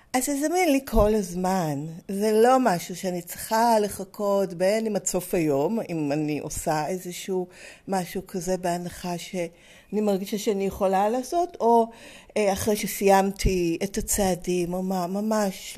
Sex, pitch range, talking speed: female, 190-245 Hz, 135 wpm